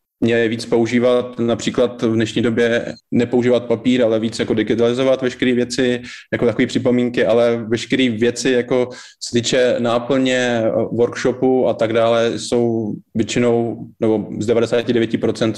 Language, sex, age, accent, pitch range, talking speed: Czech, male, 20-39, native, 115-125 Hz, 125 wpm